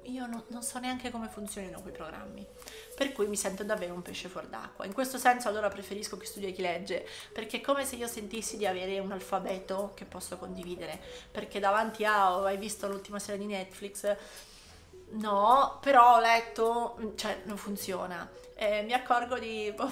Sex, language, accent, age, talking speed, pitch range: female, Italian, native, 30-49, 195 wpm, 190-230 Hz